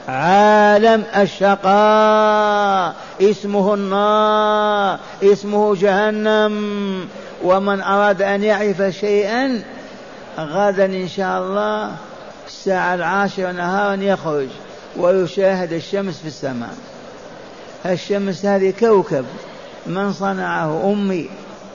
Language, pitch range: Arabic, 185-225 Hz